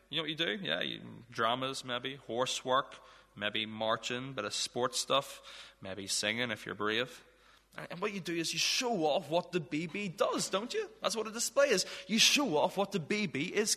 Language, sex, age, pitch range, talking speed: English, male, 20-39, 135-205 Hz, 205 wpm